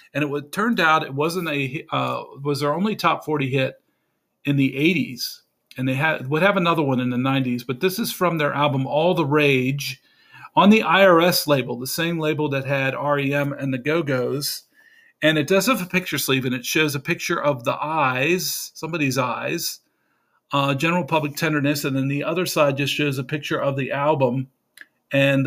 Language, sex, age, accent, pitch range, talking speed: English, male, 40-59, American, 135-175 Hz, 200 wpm